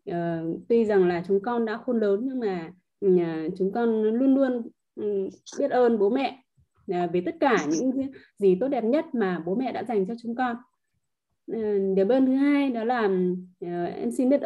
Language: Vietnamese